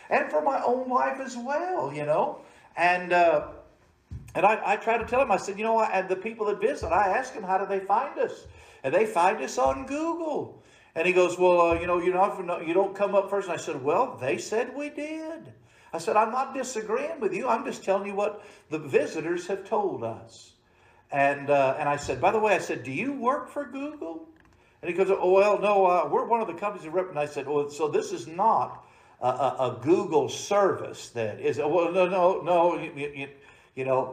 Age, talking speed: 60-79, 230 wpm